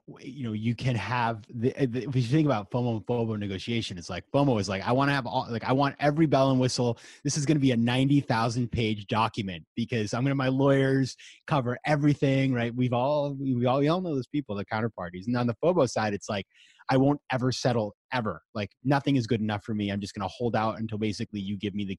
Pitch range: 100-135 Hz